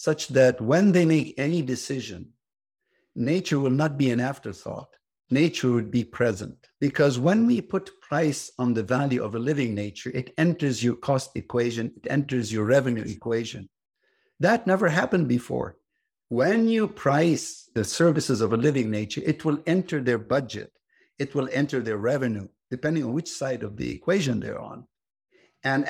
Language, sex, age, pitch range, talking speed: English, male, 60-79, 120-160 Hz, 165 wpm